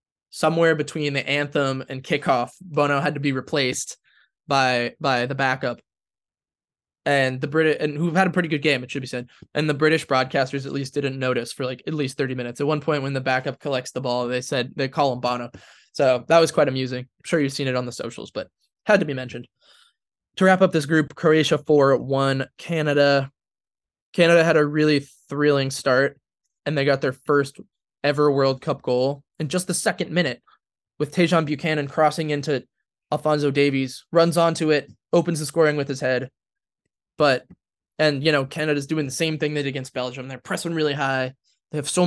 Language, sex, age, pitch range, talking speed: English, male, 20-39, 130-155 Hz, 200 wpm